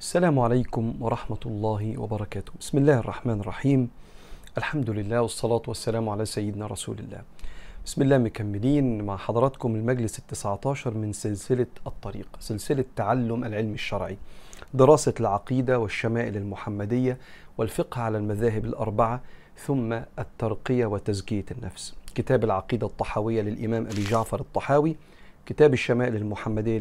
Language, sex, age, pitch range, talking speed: Arabic, male, 40-59, 105-130 Hz, 120 wpm